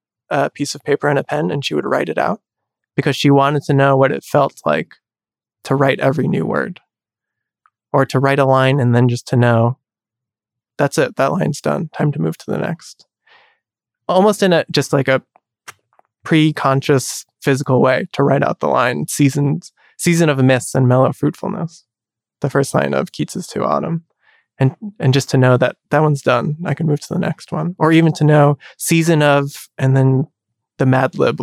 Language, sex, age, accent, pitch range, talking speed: English, male, 20-39, American, 130-155 Hz, 195 wpm